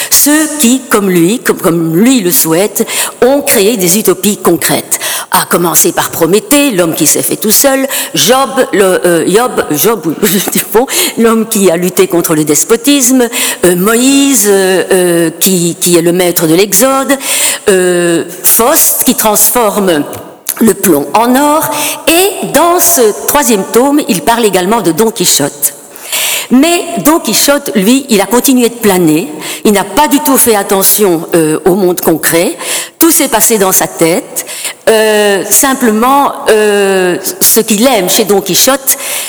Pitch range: 180-275 Hz